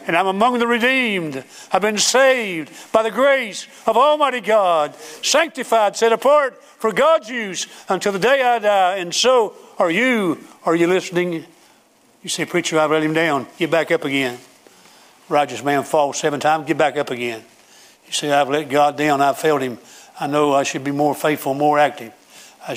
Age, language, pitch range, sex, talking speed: 60-79, English, 135-165 Hz, male, 185 wpm